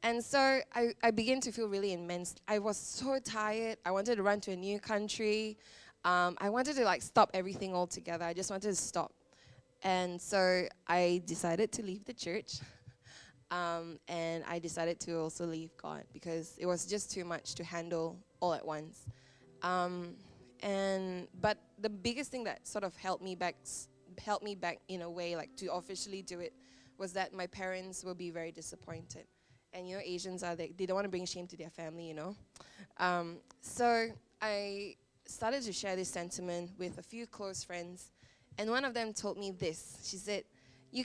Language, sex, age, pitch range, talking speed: English, female, 20-39, 170-210 Hz, 190 wpm